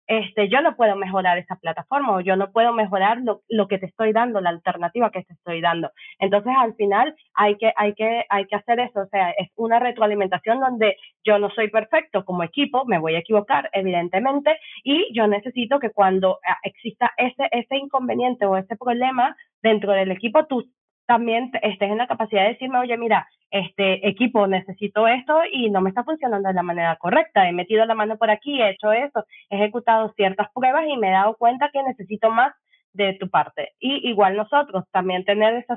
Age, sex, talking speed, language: 20-39, female, 205 wpm, Spanish